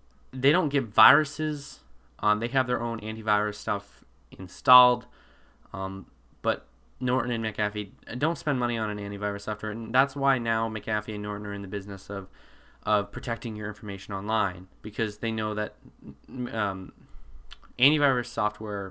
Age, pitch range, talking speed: 20-39, 100-125 Hz, 150 wpm